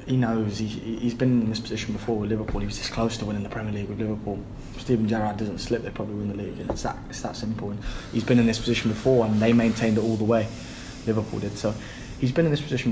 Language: English